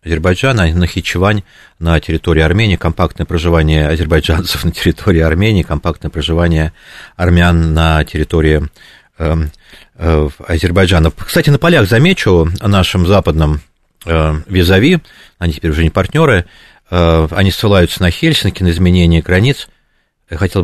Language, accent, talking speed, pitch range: Russian, native, 130 wpm, 80-100 Hz